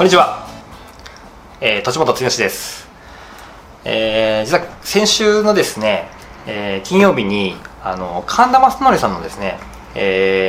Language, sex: Japanese, male